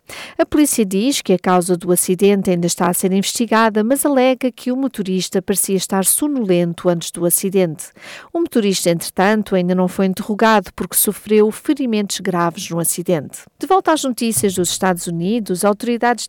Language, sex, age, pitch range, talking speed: Portuguese, female, 50-69, 185-235 Hz, 165 wpm